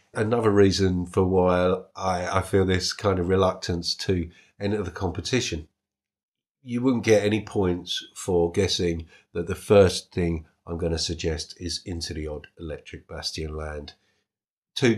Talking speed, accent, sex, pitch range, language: 150 wpm, British, male, 85-100 Hz, English